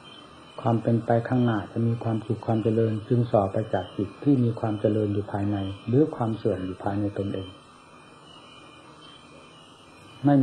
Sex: male